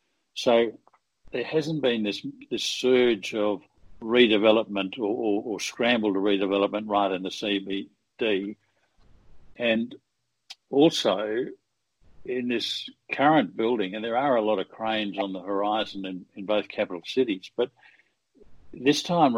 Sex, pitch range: male, 100-120 Hz